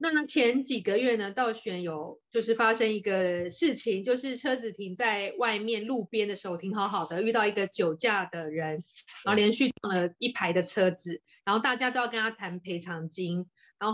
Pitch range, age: 190-245 Hz, 30-49